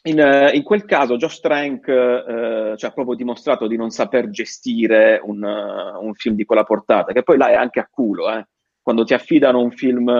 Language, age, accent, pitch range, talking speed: Italian, 30-49, native, 105-120 Hz, 210 wpm